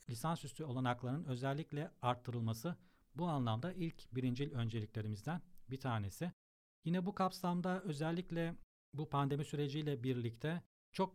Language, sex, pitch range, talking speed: Turkish, male, 125-160 Hz, 110 wpm